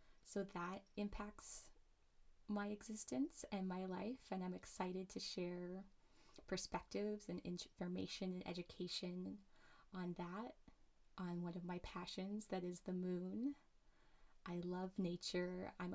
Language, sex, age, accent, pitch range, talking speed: English, female, 20-39, American, 180-200 Hz, 125 wpm